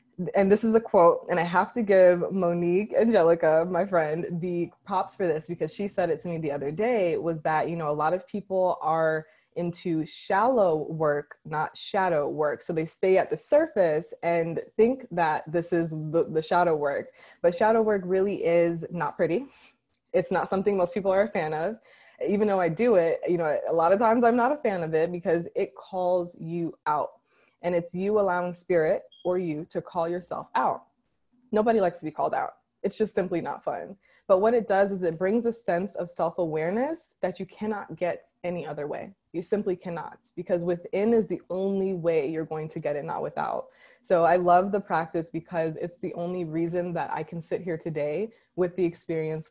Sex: female